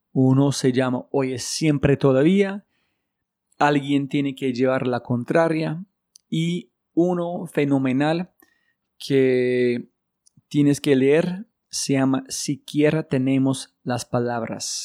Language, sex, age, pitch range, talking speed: Spanish, male, 40-59, 125-155 Hz, 105 wpm